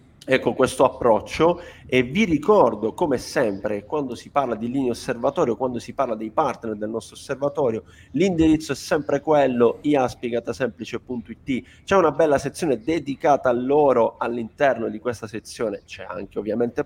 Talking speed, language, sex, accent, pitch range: 150 wpm, Italian, male, native, 115-140 Hz